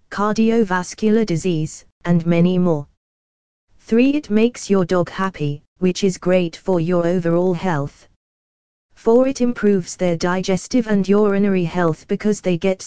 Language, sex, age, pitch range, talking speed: English, female, 20-39, 170-210 Hz, 135 wpm